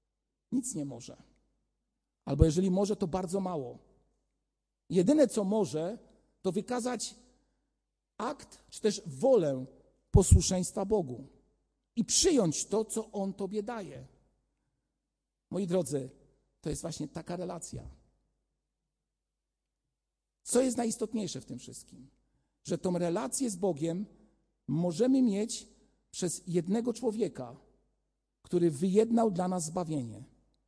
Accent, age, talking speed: native, 50-69, 110 wpm